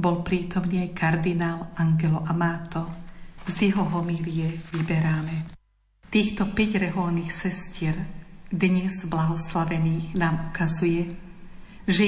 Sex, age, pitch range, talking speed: female, 50-69, 165-185 Hz, 100 wpm